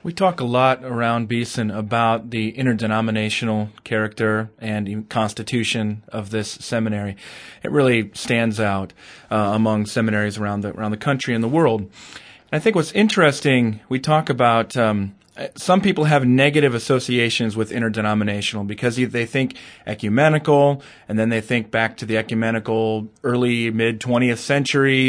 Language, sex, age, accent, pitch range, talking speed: English, male, 30-49, American, 110-130 Hz, 145 wpm